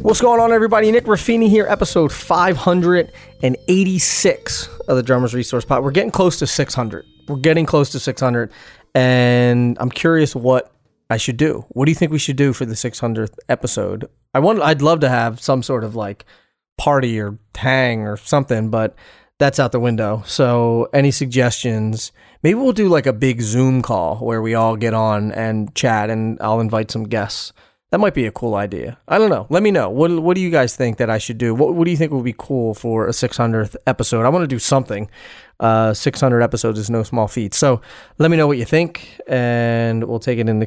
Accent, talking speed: American, 220 wpm